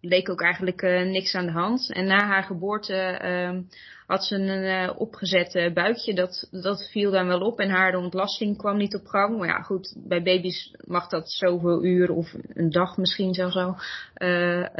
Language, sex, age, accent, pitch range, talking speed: Dutch, female, 20-39, Dutch, 190-225 Hz, 195 wpm